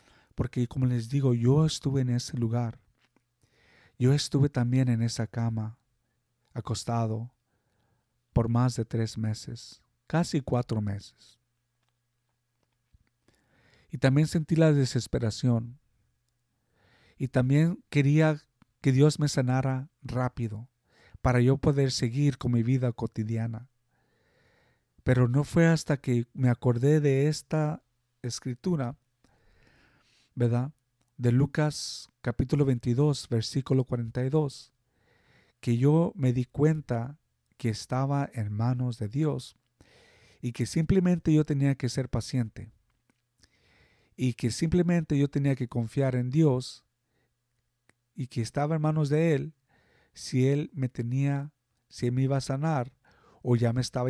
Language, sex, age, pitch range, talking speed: Spanish, male, 50-69, 115-140 Hz, 125 wpm